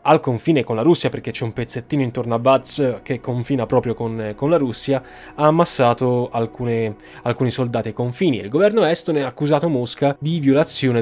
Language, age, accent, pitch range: Italian, 10-29, native, 115-155 Hz